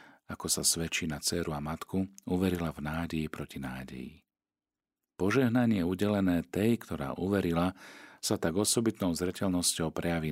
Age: 40-59